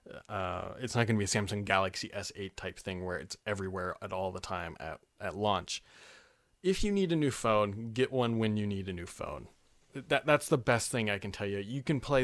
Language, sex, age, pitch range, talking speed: English, male, 30-49, 105-135 Hz, 235 wpm